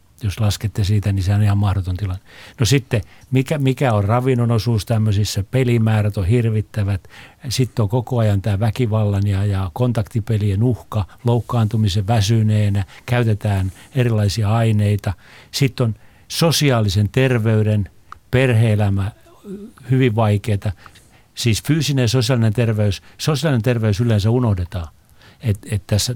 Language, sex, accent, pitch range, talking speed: Finnish, male, native, 105-130 Hz, 125 wpm